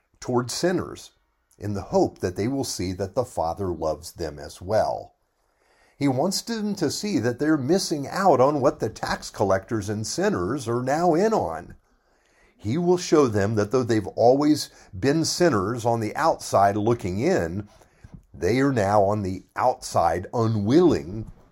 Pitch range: 100-150 Hz